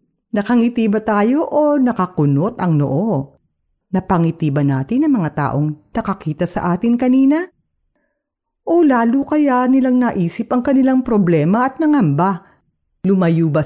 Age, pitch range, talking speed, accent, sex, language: 50-69, 165-265 Hz, 125 wpm, native, female, Filipino